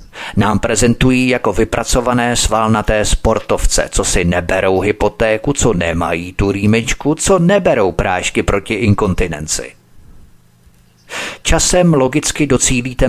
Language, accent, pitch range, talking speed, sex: Czech, native, 95-120 Hz, 100 wpm, male